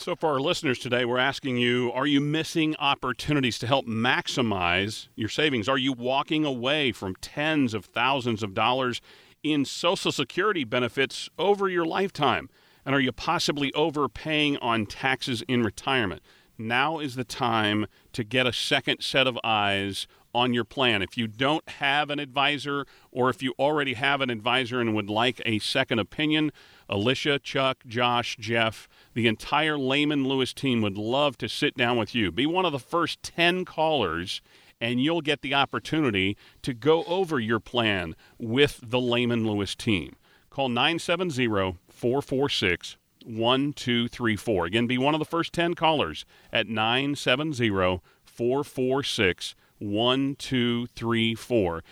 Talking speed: 150 wpm